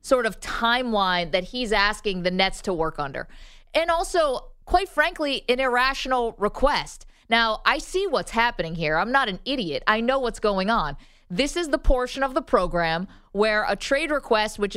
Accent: American